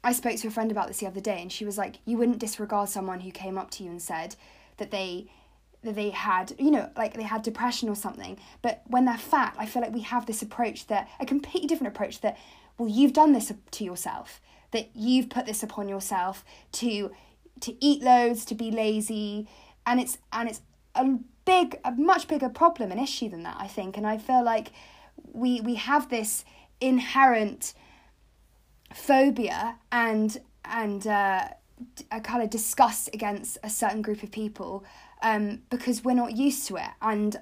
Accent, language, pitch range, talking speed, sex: British, English, 205-250 Hz, 195 wpm, female